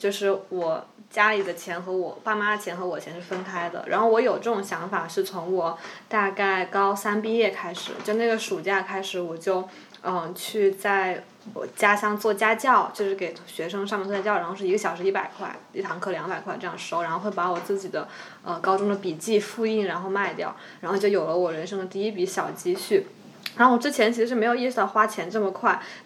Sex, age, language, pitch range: female, 20-39, Chinese, 190-235 Hz